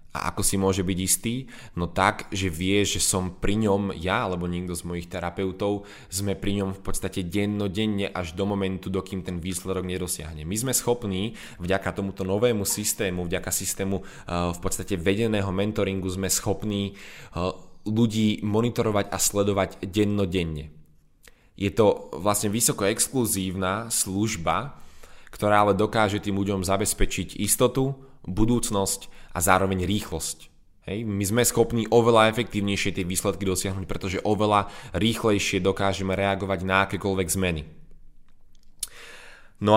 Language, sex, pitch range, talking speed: Slovak, male, 95-105 Hz, 135 wpm